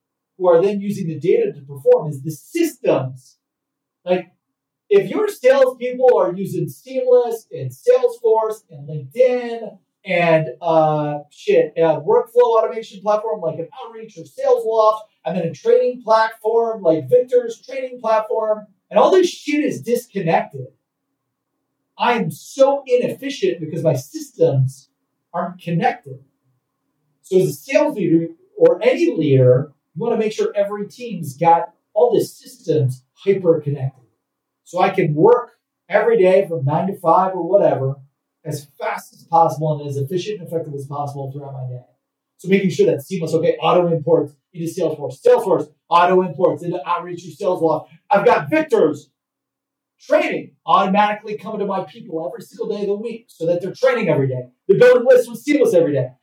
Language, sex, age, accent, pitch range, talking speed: English, male, 40-59, American, 160-250 Hz, 160 wpm